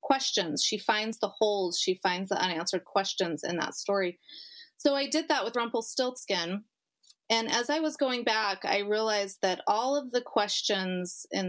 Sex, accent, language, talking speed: female, American, English, 170 wpm